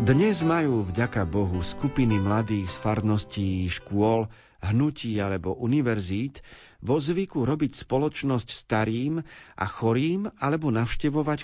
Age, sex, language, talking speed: 50-69, male, Slovak, 110 wpm